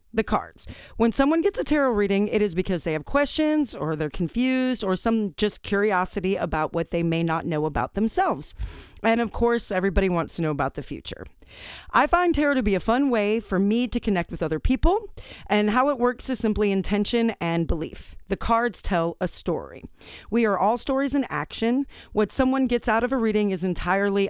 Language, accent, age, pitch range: English, American, 40-59, 190-250 Hz